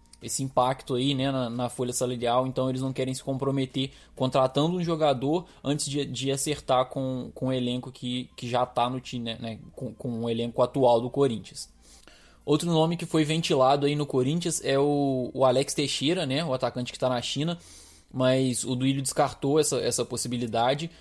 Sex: male